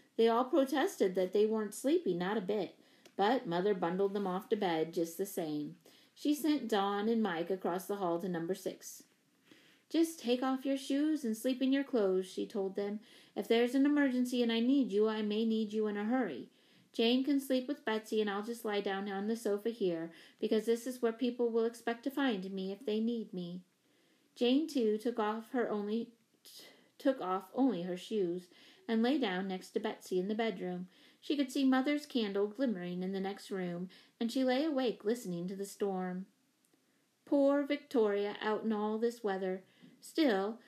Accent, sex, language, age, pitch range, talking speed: American, female, English, 30-49, 190-255 Hz, 200 wpm